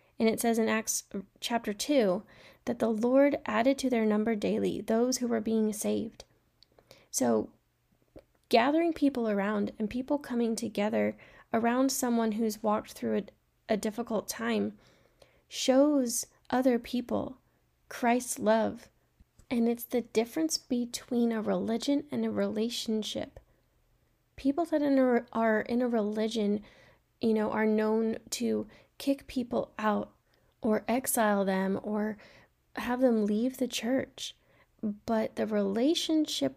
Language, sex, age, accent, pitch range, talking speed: English, female, 10-29, American, 215-255 Hz, 130 wpm